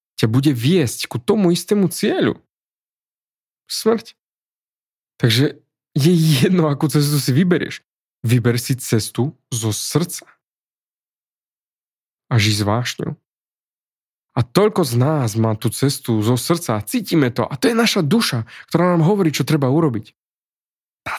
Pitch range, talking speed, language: 115-155 Hz, 135 wpm, Slovak